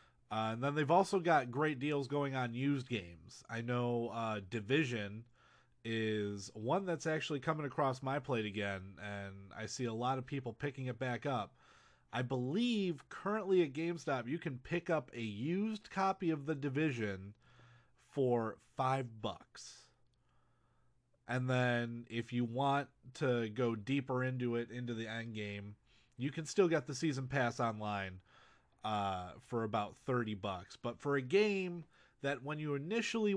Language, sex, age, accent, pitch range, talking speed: English, male, 30-49, American, 115-150 Hz, 160 wpm